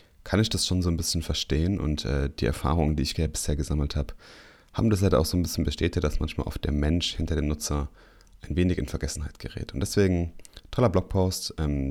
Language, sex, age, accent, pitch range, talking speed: German, male, 30-49, German, 75-95 Hz, 215 wpm